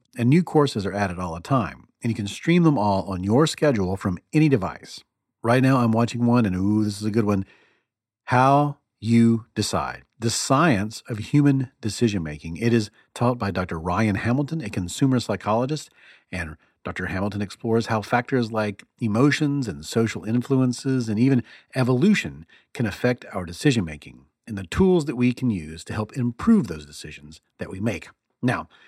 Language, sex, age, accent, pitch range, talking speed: English, male, 40-59, American, 100-140 Hz, 175 wpm